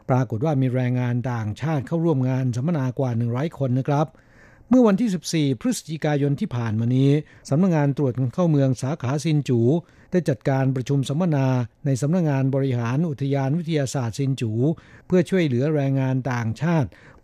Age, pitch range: 60-79, 130-155 Hz